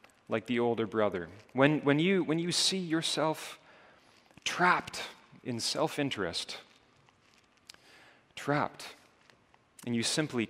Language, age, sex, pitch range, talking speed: English, 30-49, male, 110-140 Hz, 105 wpm